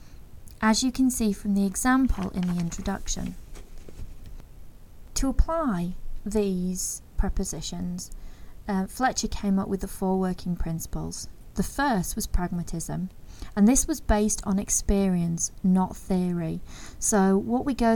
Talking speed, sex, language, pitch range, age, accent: 130 wpm, female, English, 175-215 Hz, 30-49, British